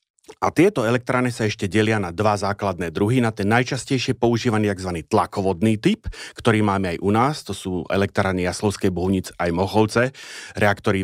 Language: Slovak